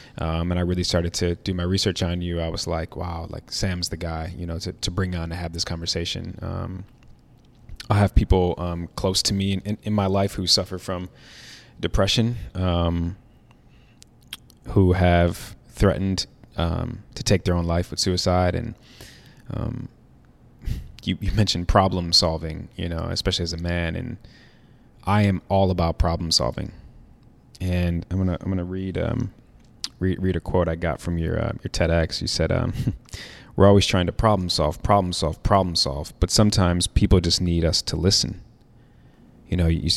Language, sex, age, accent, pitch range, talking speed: English, male, 20-39, American, 85-100 Hz, 180 wpm